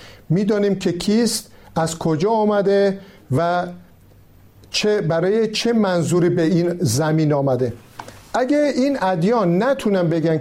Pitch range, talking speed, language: 135-205 Hz, 115 wpm, Persian